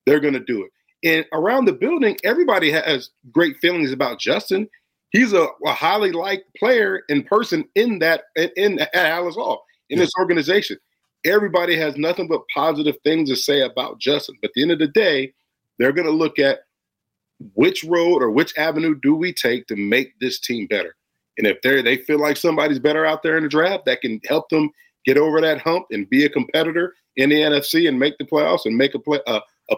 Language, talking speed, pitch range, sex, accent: English, 210 wpm, 145-210 Hz, male, American